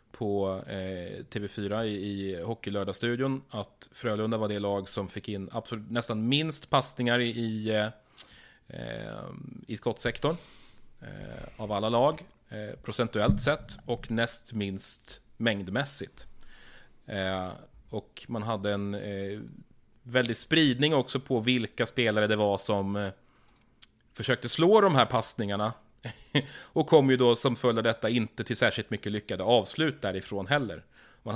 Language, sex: Swedish, male